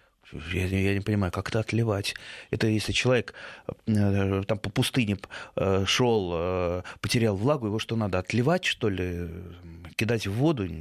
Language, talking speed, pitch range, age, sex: Russian, 130 wpm, 105-130 Hz, 30-49, male